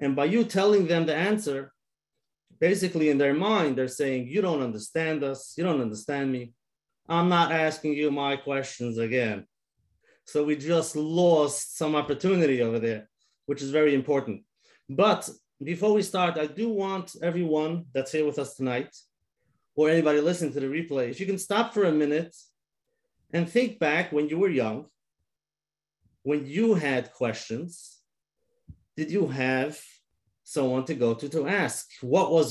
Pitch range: 140-175 Hz